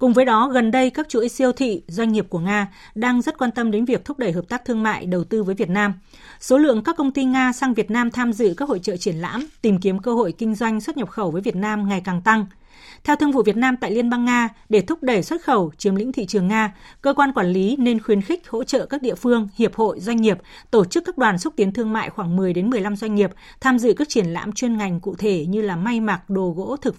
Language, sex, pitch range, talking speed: Vietnamese, female, 205-250 Hz, 280 wpm